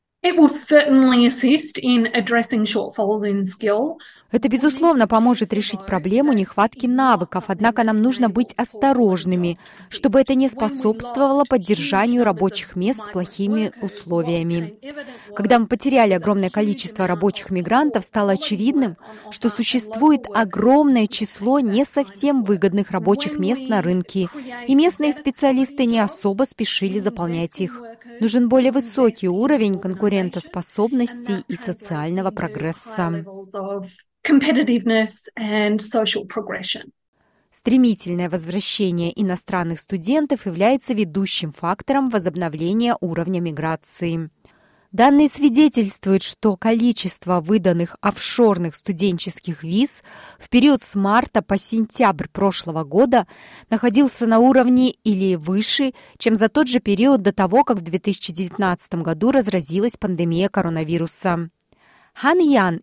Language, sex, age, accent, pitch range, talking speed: Russian, female, 20-39, native, 185-250 Hz, 100 wpm